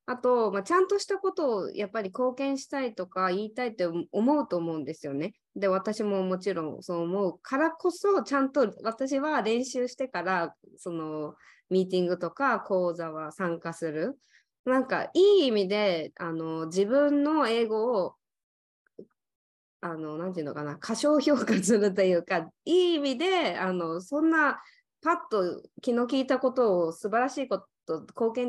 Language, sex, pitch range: Japanese, female, 180-270 Hz